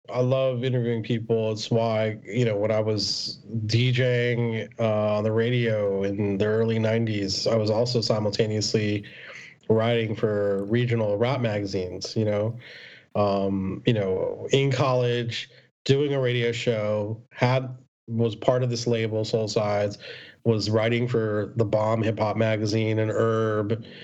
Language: English